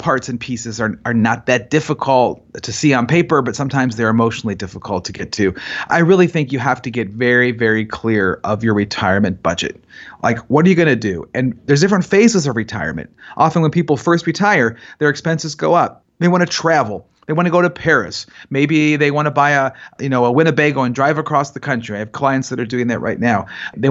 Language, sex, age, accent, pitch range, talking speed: English, male, 40-59, American, 115-150 Hz, 230 wpm